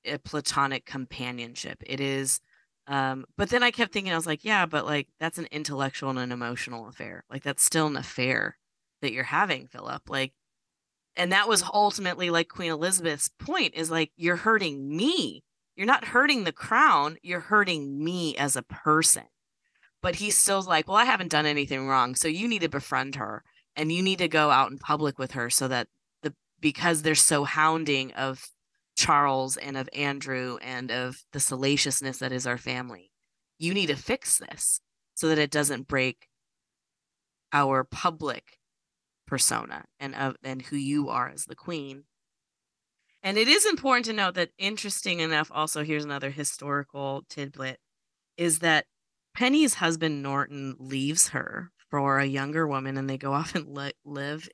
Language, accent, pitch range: English, American, 135-170 Hz